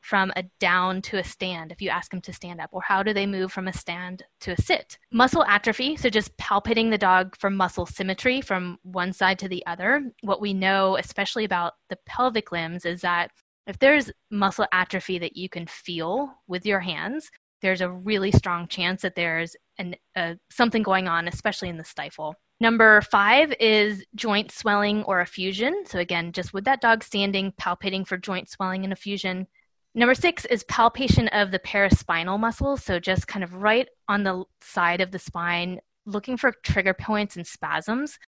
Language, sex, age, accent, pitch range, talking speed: English, female, 20-39, American, 180-215 Hz, 190 wpm